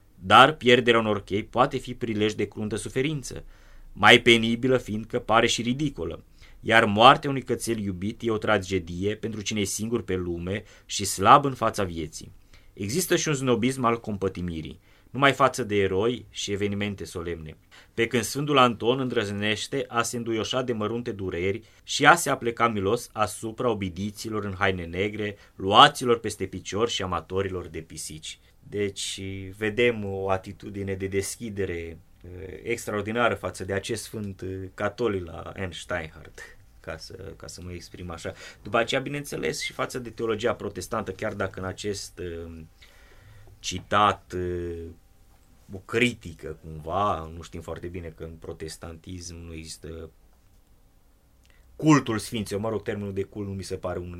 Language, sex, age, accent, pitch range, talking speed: Romanian, male, 20-39, native, 90-115 Hz, 150 wpm